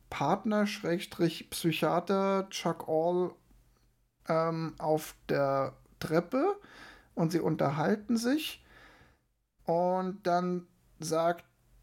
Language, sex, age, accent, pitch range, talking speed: German, male, 10-29, German, 140-170 Hz, 70 wpm